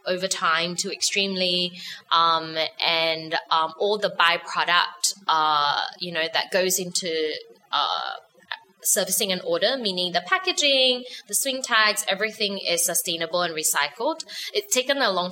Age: 20-39